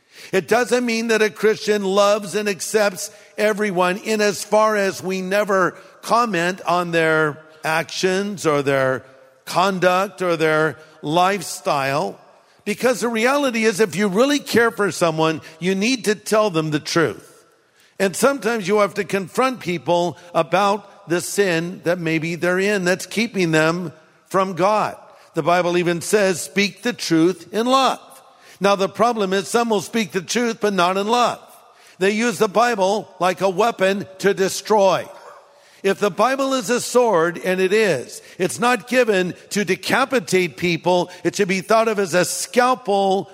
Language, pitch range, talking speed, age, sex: English, 170-210 Hz, 160 wpm, 50-69, male